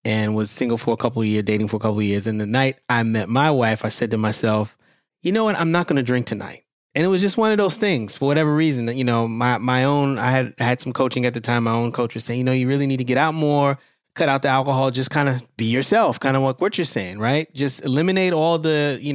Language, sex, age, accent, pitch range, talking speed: English, male, 20-39, American, 115-145 Hz, 300 wpm